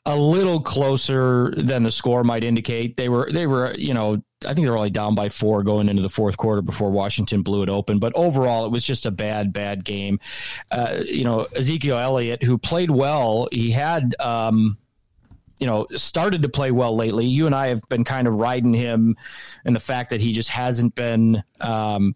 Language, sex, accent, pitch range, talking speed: English, male, American, 110-130 Hz, 205 wpm